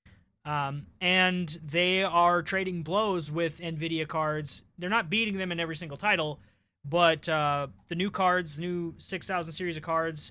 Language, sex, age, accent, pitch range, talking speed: English, male, 20-39, American, 155-200 Hz, 165 wpm